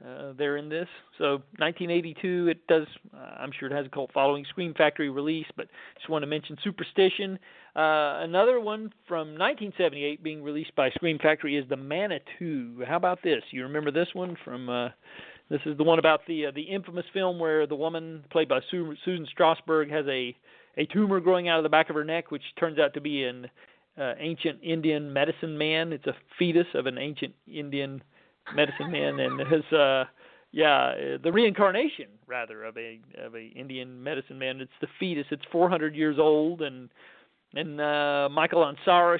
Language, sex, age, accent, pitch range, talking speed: English, male, 40-59, American, 140-170 Hz, 185 wpm